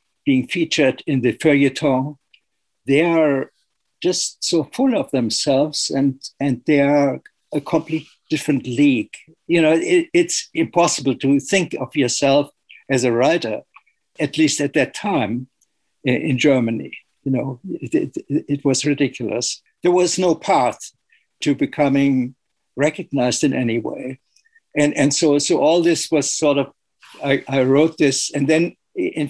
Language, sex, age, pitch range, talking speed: English, male, 60-79, 130-160 Hz, 150 wpm